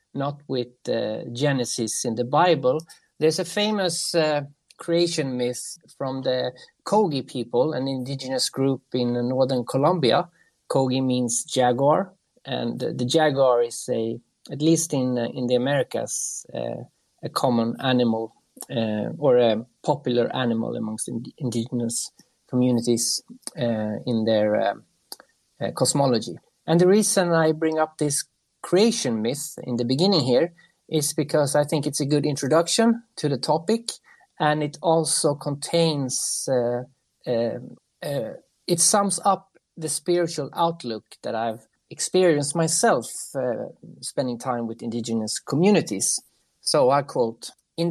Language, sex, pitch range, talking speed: English, male, 125-165 Hz, 135 wpm